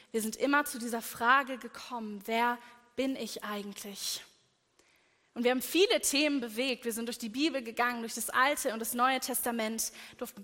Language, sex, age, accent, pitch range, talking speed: German, female, 20-39, German, 230-265 Hz, 180 wpm